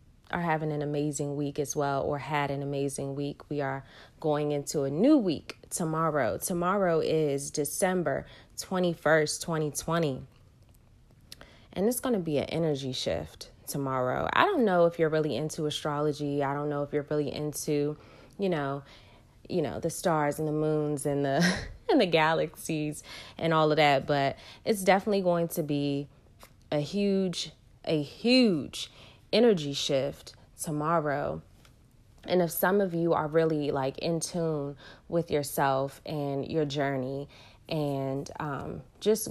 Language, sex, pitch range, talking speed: English, female, 140-165 Hz, 155 wpm